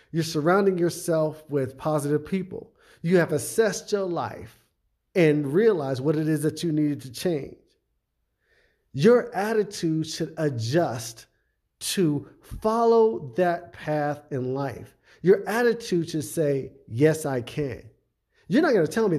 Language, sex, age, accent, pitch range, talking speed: English, male, 50-69, American, 135-185 Hz, 140 wpm